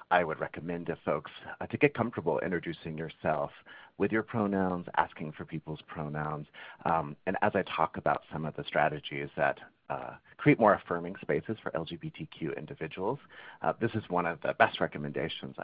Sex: male